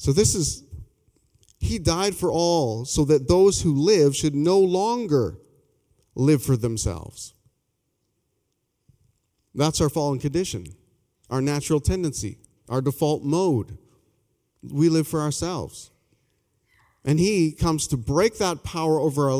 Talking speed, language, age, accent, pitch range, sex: 125 wpm, English, 40-59, American, 115-155 Hz, male